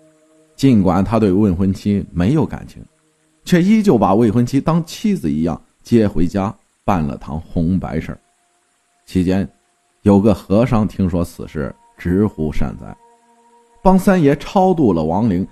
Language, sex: Chinese, male